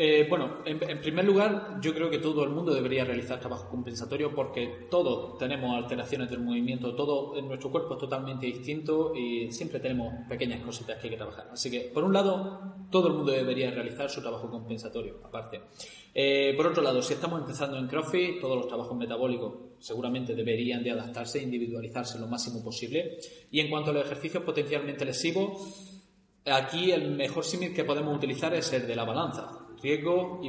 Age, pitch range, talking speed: 20-39, 125-155 Hz, 190 wpm